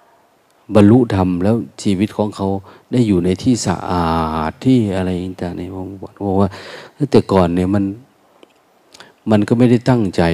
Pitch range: 95-115 Hz